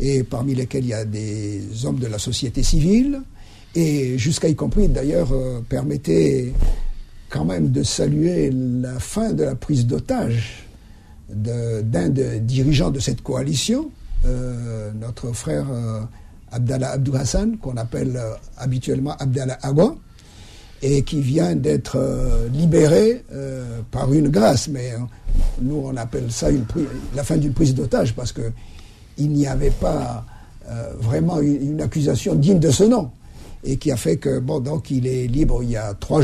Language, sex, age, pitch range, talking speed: French, male, 50-69, 120-155 Hz, 165 wpm